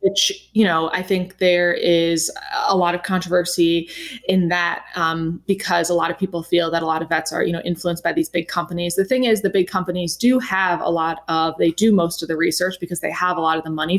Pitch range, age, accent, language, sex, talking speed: 165-190 Hz, 20-39, American, English, female, 250 wpm